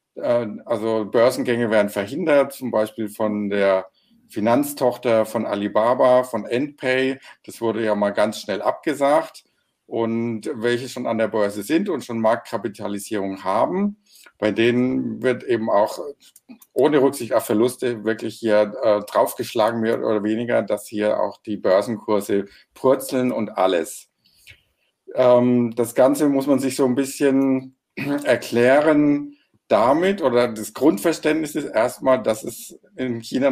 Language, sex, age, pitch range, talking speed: German, male, 50-69, 110-130 Hz, 135 wpm